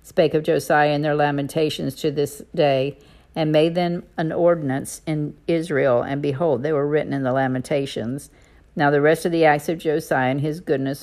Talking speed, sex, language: 190 wpm, female, English